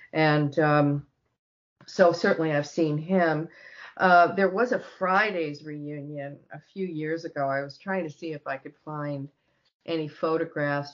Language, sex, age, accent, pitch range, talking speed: English, female, 40-59, American, 140-170 Hz, 155 wpm